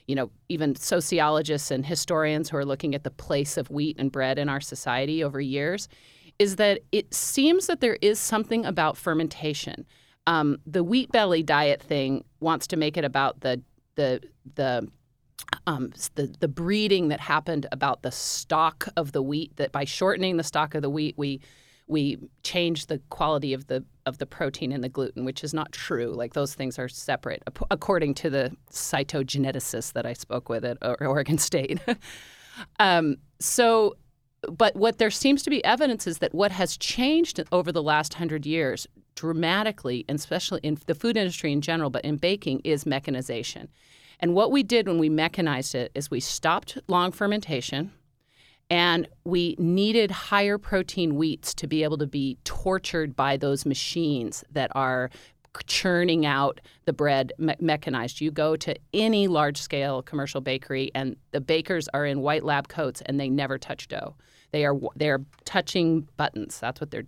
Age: 40-59